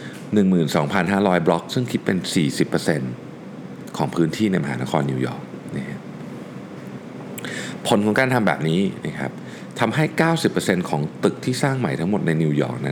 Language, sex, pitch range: Thai, male, 75-115 Hz